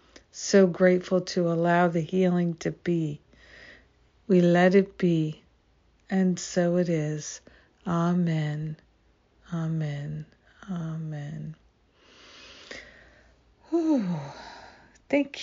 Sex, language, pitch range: female, English, 170-200 Hz